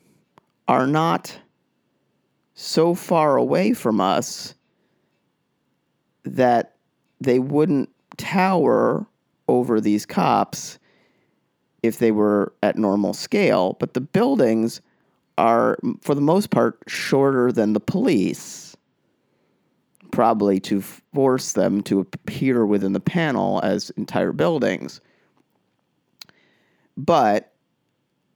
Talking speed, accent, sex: 95 wpm, American, male